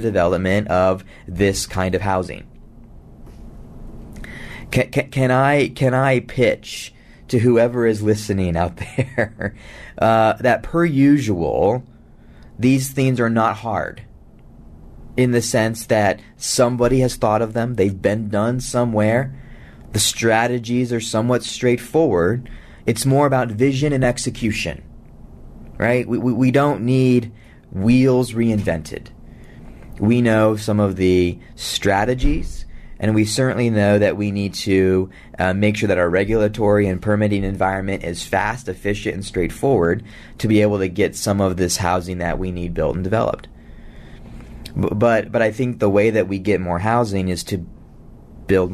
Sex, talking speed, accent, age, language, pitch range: male, 145 wpm, American, 30-49, English, 95-120 Hz